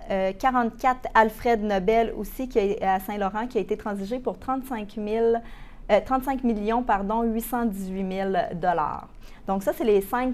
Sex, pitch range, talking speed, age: female, 190-230 Hz, 135 wpm, 30-49